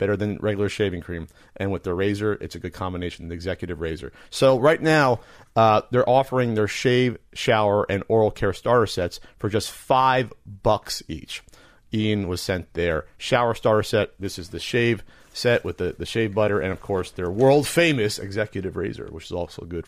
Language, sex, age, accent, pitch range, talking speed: English, male, 40-59, American, 95-130 Hz, 195 wpm